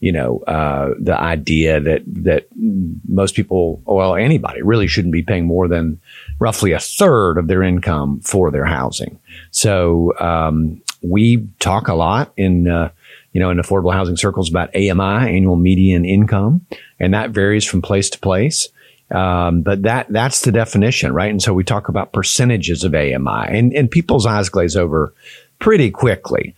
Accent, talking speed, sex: American, 170 wpm, male